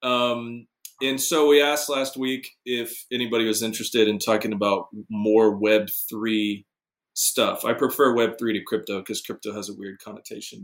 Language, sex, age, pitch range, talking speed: English, male, 20-39, 110-135 Hz, 160 wpm